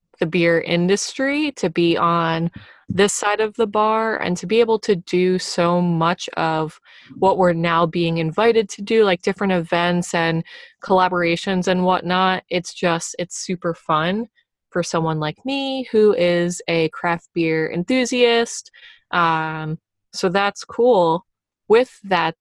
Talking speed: 145 wpm